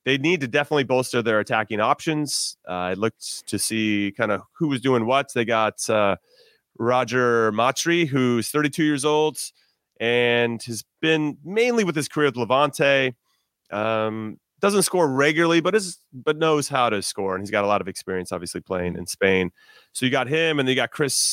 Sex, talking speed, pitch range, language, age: male, 185 wpm, 105-155 Hz, English, 30-49